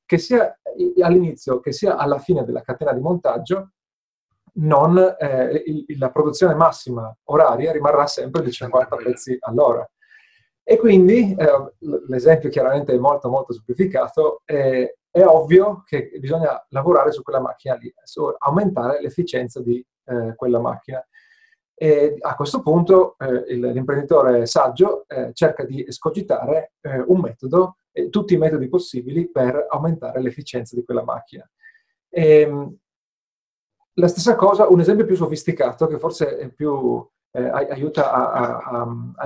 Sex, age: male, 40-59